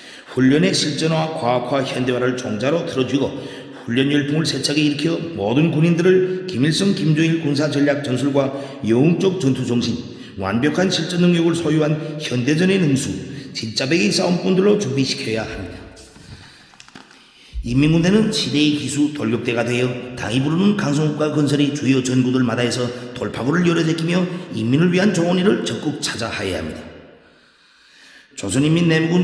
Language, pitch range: Korean, 130-165 Hz